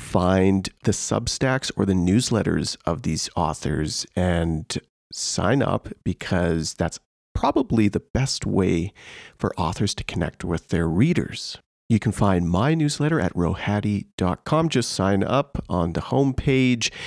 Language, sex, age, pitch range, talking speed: English, male, 40-59, 90-130 Hz, 135 wpm